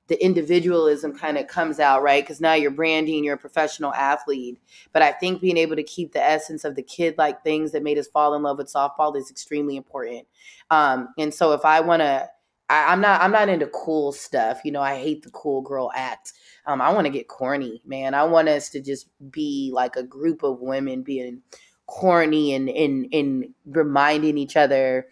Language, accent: English, American